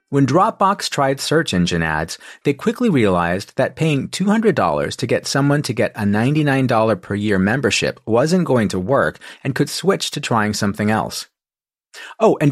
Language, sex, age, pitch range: English, male, 30-49, 105-165 Hz